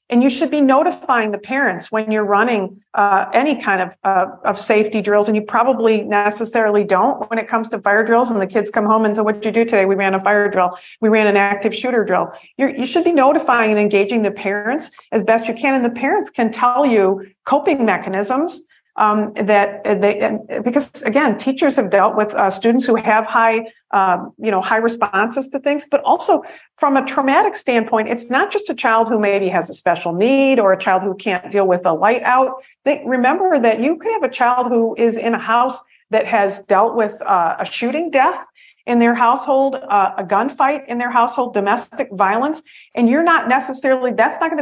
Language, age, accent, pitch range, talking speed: English, 50-69, American, 205-260 Hz, 215 wpm